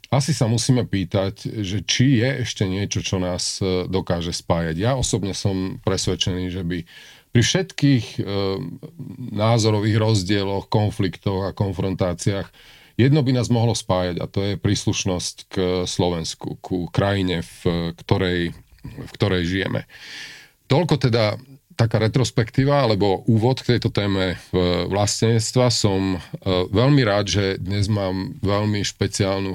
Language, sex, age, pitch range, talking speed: Slovak, male, 40-59, 95-120 Hz, 125 wpm